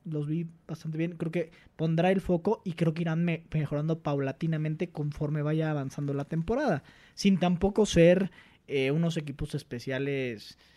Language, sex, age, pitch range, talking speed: Spanish, male, 20-39, 150-190 Hz, 155 wpm